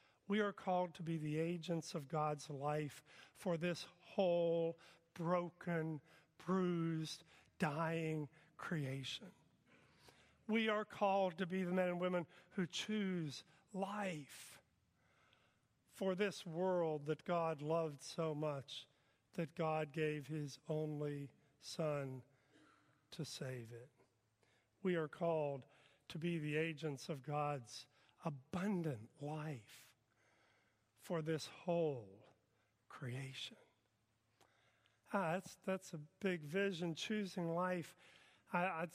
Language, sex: English, male